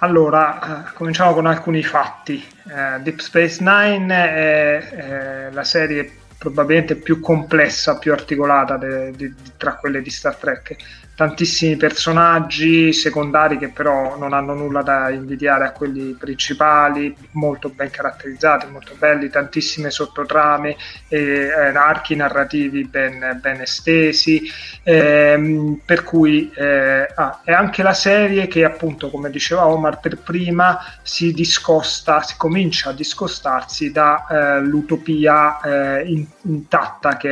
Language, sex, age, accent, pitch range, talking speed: Italian, male, 30-49, native, 140-165 Hz, 120 wpm